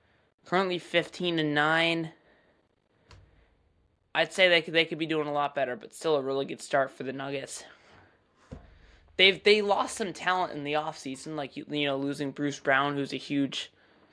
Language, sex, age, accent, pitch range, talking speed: English, male, 20-39, American, 140-175 Hz, 185 wpm